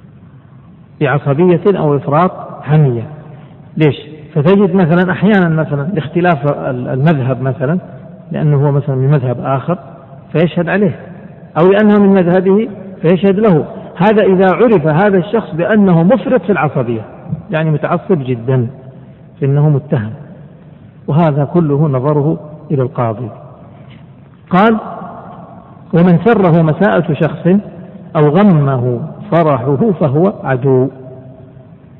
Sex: male